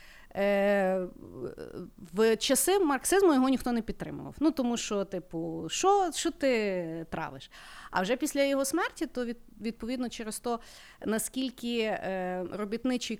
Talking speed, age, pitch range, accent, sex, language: 120 wpm, 30-49, 190-255 Hz, native, female, Ukrainian